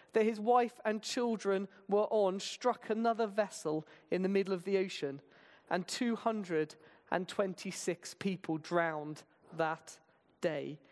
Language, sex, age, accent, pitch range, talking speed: English, male, 40-59, British, 170-235 Hz, 120 wpm